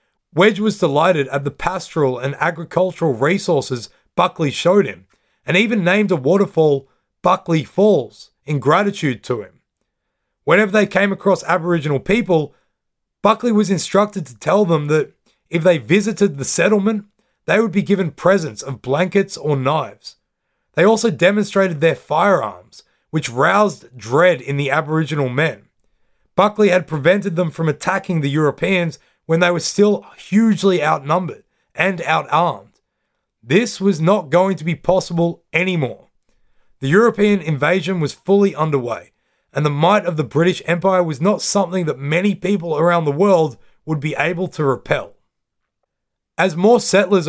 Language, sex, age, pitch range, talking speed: English, male, 30-49, 150-195 Hz, 145 wpm